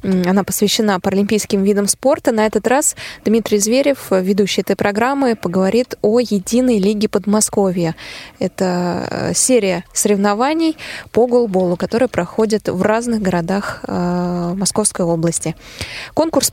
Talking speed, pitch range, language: 115 wpm, 190-230 Hz, Russian